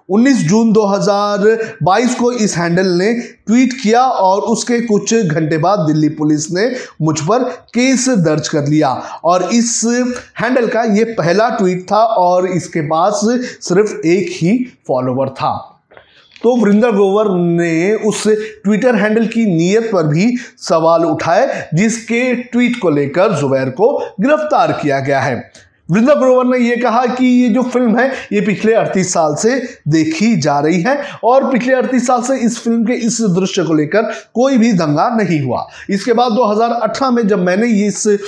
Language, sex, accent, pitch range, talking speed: Hindi, male, native, 180-235 Hz, 165 wpm